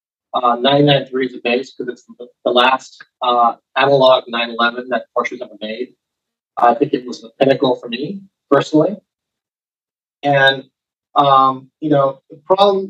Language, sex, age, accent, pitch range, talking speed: English, male, 40-59, American, 125-150 Hz, 150 wpm